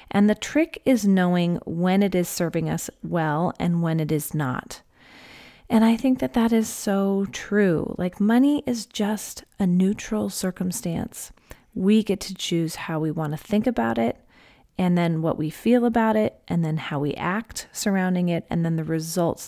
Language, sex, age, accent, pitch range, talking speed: English, female, 30-49, American, 170-220 Hz, 185 wpm